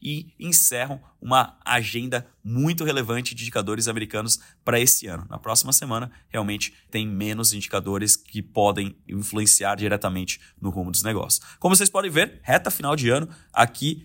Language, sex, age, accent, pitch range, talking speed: Portuguese, male, 20-39, Brazilian, 100-120 Hz, 155 wpm